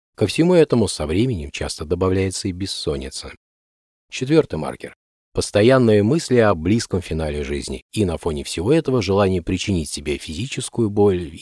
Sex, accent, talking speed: male, native, 140 wpm